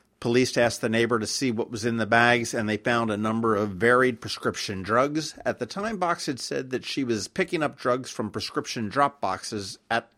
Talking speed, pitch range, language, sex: 220 wpm, 115-145 Hz, English, male